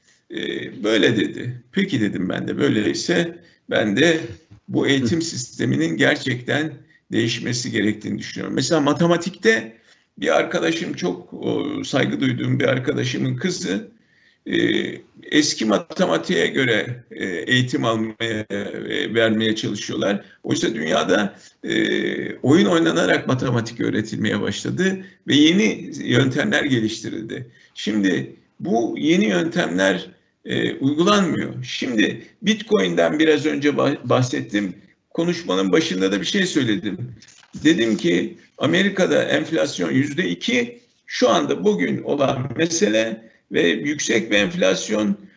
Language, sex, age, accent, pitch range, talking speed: Turkish, male, 50-69, native, 110-160 Hz, 100 wpm